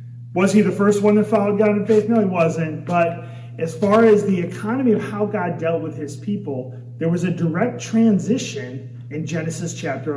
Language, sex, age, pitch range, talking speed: English, male, 30-49, 145-195 Hz, 200 wpm